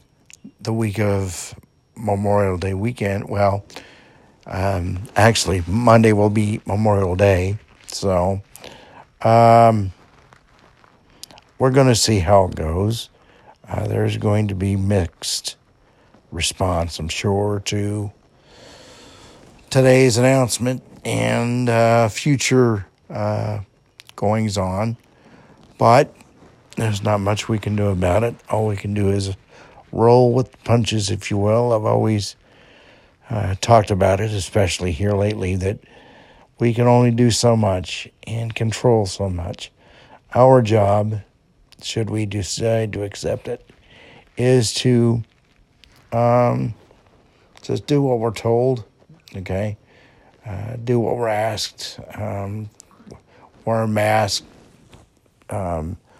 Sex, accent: male, American